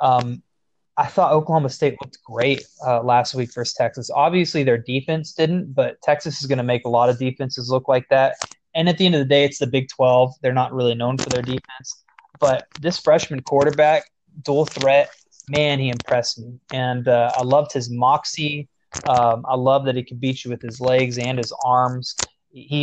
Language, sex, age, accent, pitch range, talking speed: English, male, 20-39, American, 130-165 Hz, 205 wpm